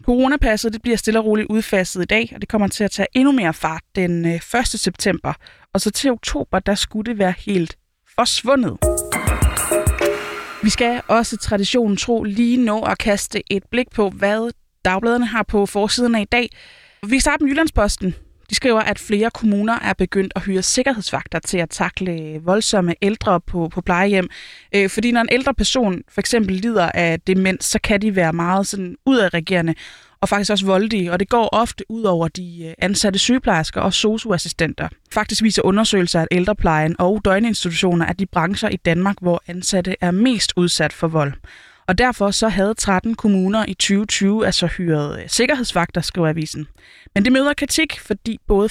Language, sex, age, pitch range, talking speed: Danish, female, 20-39, 180-225 Hz, 175 wpm